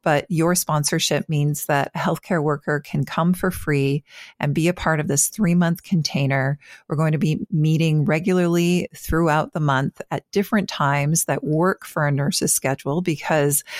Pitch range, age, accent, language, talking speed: 150-180 Hz, 40-59, American, English, 170 wpm